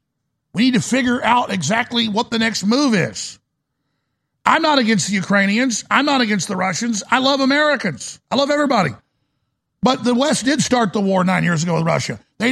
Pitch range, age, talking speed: 170-235 Hz, 50-69, 190 wpm